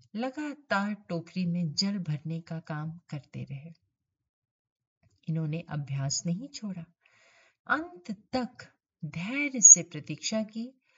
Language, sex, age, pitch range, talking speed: Hindi, female, 50-69, 155-220 Hz, 105 wpm